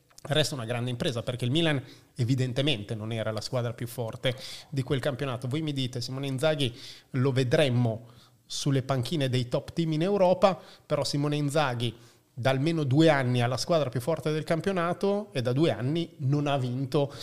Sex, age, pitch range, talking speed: male, 30-49, 130-165 Hz, 180 wpm